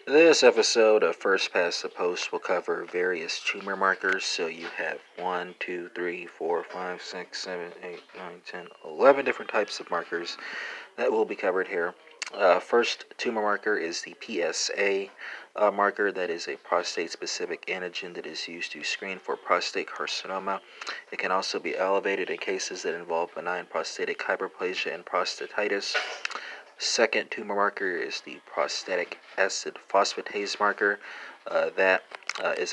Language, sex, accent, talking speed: English, male, American, 155 wpm